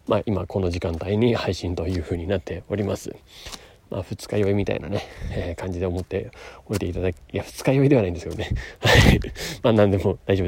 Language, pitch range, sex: Japanese, 95-120 Hz, male